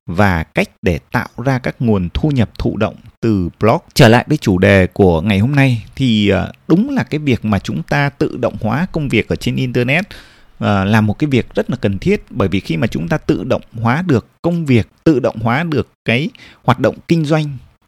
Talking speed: 225 wpm